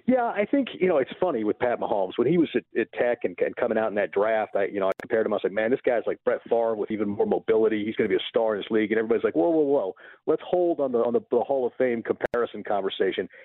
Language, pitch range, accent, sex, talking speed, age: English, 115-190 Hz, American, male, 310 wpm, 50-69